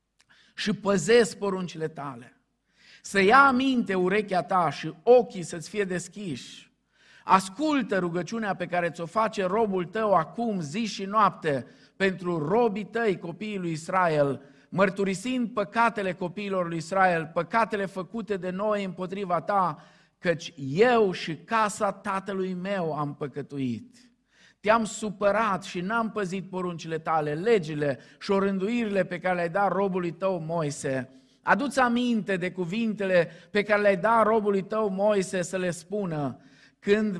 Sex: male